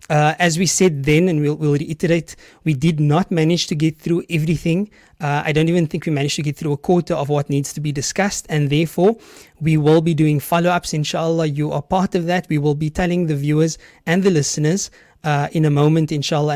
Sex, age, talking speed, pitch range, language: male, 20-39, 225 wpm, 150-180 Hz, English